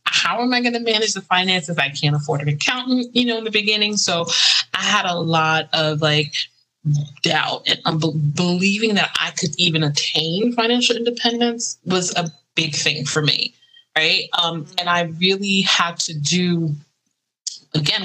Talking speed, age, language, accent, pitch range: 165 wpm, 20-39, English, American, 155-195 Hz